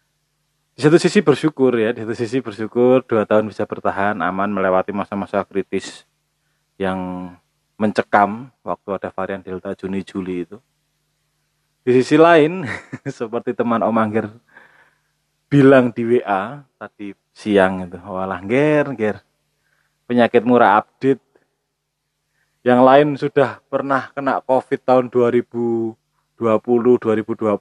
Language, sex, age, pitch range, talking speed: Indonesian, male, 20-39, 105-145 Hz, 115 wpm